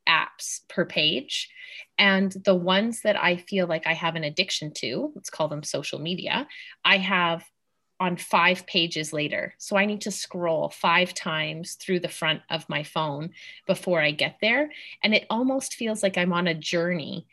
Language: English